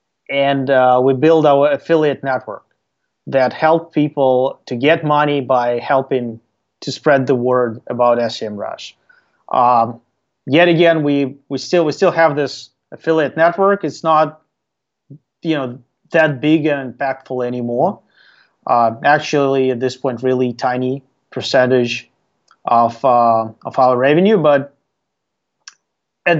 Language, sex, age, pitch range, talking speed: English, male, 30-49, 125-155 Hz, 135 wpm